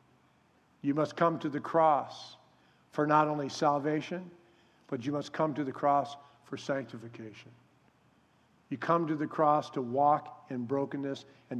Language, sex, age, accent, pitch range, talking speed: English, male, 50-69, American, 135-165 Hz, 150 wpm